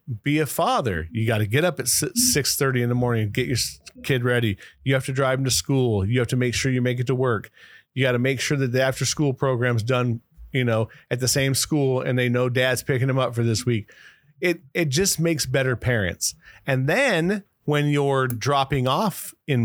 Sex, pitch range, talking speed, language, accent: male, 110-135 Hz, 230 wpm, English, American